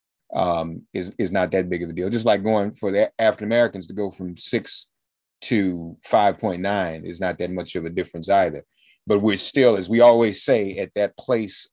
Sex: male